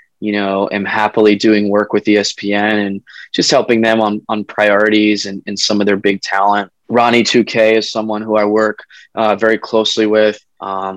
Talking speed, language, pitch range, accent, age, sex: 185 wpm, English, 105-120 Hz, American, 20-39, male